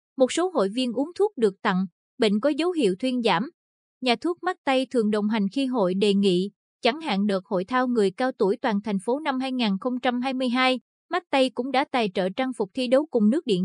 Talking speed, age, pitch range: 225 wpm, 20-39, 210-275 Hz